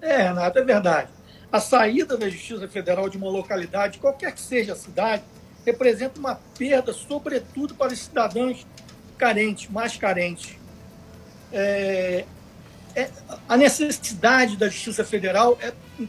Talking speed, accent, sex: 135 wpm, Brazilian, male